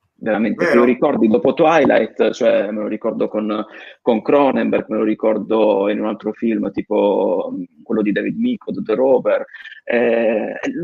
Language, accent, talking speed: Italian, native, 160 wpm